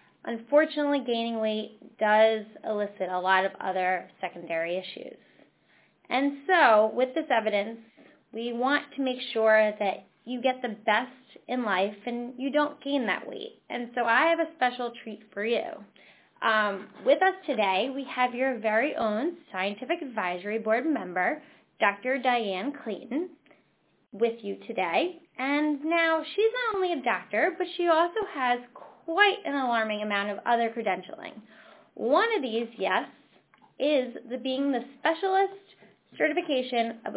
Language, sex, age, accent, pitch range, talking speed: English, female, 10-29, American, 215-290 Hz, 145 wpm